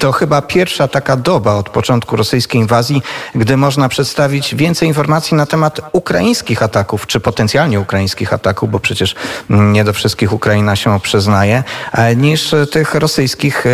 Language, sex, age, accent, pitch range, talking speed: Polish, male, 40-59, native, 105-125 Hz, 145 wpm